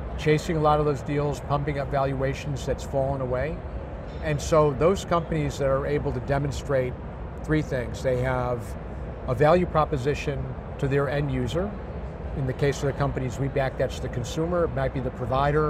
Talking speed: 185 wpm